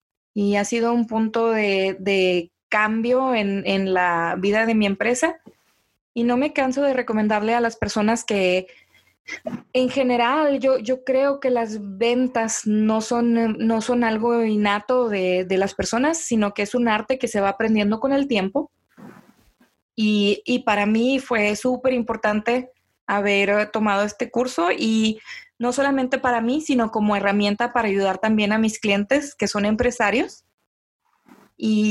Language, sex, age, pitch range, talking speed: English, female, 20-39, 215-260 Hz, 160 wpm